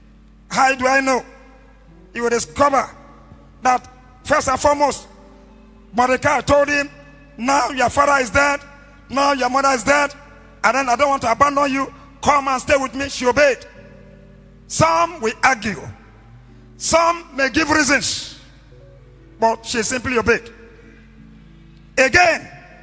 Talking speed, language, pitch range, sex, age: 135 wpm, English, 240-300 Hz, male, 40-59